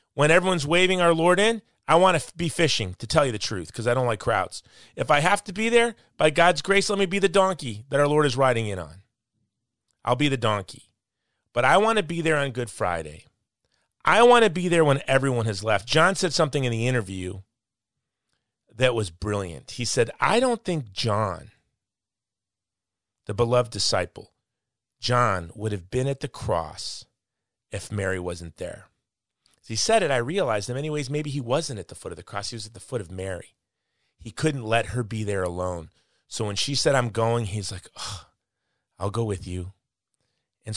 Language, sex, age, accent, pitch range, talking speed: English, male, 30-49, American, 105-145 Hz, 205 wpm